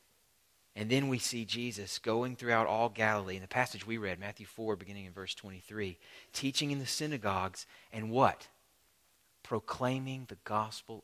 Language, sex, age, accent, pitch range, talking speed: English, male, 30-49, American, 105-140 Hz, 160 wpm